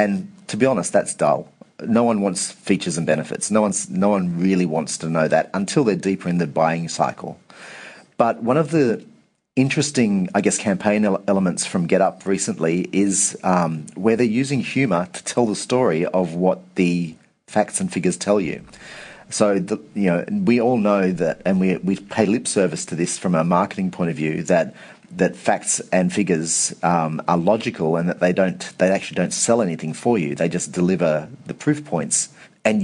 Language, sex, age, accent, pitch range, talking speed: English, male, 40-59, Australian, 85-110 Hz, 190 wpm